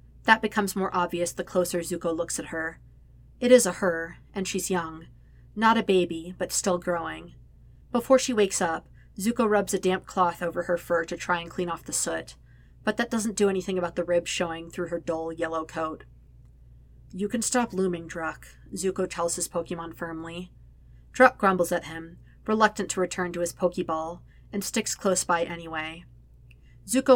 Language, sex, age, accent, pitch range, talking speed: English, female, 40-59, American, 160-185 Hz, 180 wpm